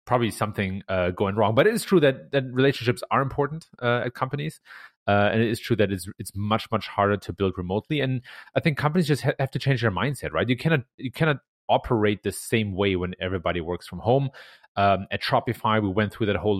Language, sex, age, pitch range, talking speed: English, male, 30-49, 100-125 Hz, 230 wpm